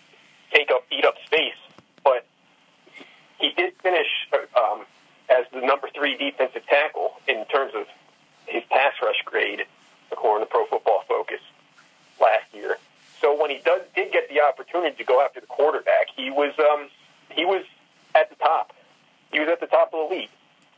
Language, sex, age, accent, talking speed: English, male, 40-59, American, 170 wpm